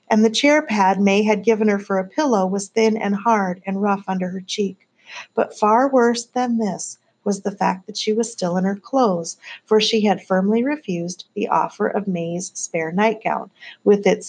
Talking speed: 200 wpm